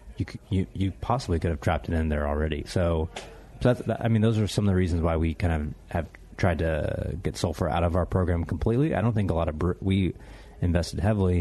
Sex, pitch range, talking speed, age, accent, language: male, 80-105 Hz, 240 wpm, 30-49, American, English